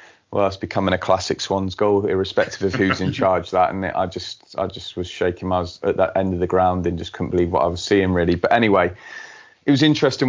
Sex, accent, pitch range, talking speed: male, British, 95-120 Hz, 250 wpm